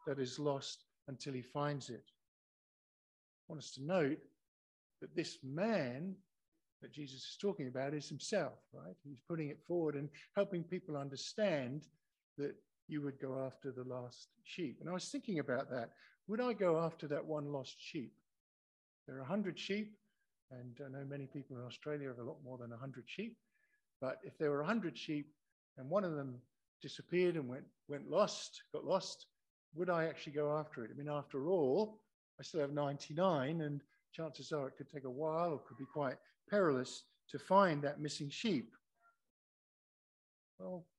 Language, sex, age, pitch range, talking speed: English, male, 50-69, 135-180 Hz, 180 wpm